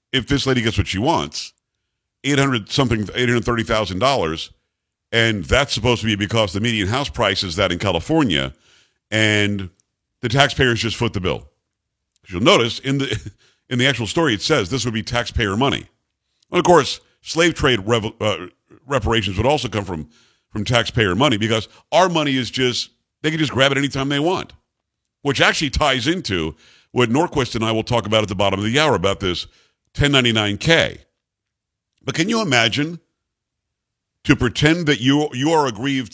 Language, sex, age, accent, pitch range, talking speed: English, male, 50-69, American, 105-130 Hz, 185 wpm